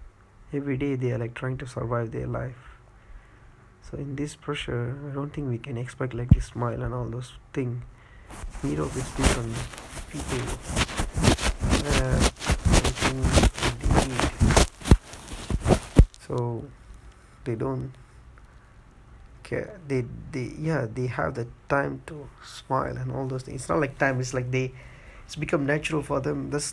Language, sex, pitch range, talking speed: English, male, 115-140 Hz, 125 wpm